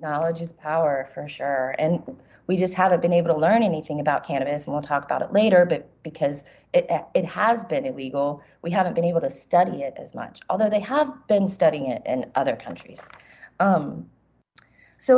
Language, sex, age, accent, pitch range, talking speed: English, female, 30-49, American, 155-200 Hz, 195 wpm